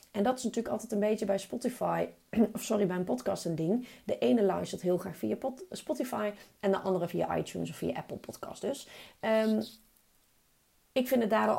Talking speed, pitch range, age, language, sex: 195 wpm, 180-220 Hz, 30-49, Dutch, female